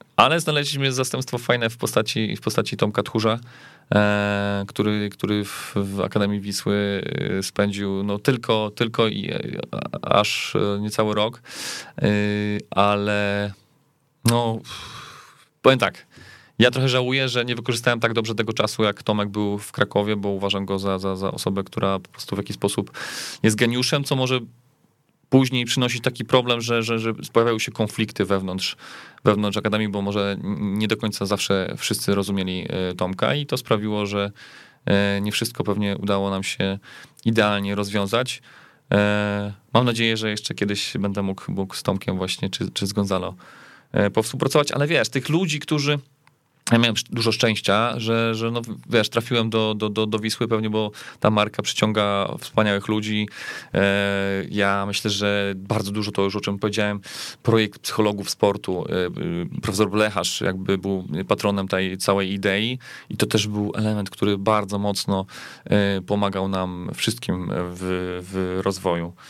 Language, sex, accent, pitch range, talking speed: Polish, male, native, 100-115 Hz, 150 wpm